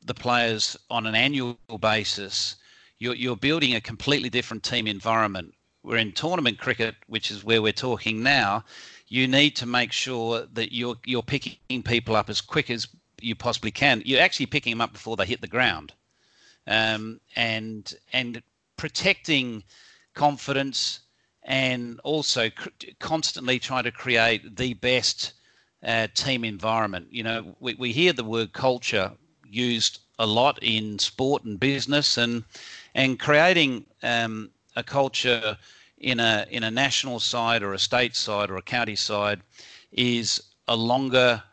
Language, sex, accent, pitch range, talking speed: English, male, Australian, 110-130 Hz, 155 wpm